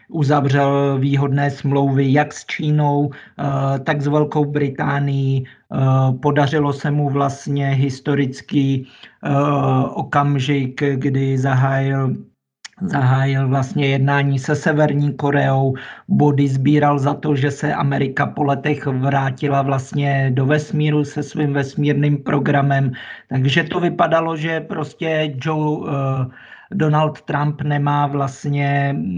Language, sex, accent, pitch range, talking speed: Czech, male, native, 135-150 Hz, 105 wpm